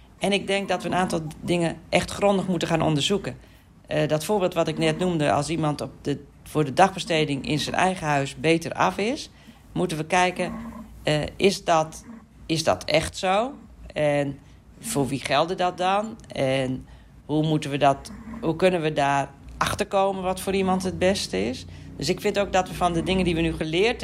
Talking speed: 195 wpm